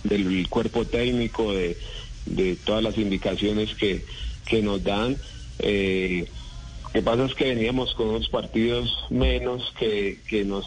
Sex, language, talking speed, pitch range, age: male, Spanish, 145 wpm, 100-115 Hz, 30-49